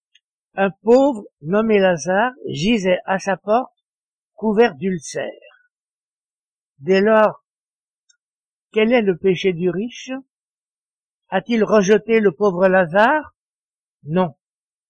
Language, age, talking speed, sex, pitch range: French, 60-79, 95 wpm, male, 180-225 Hz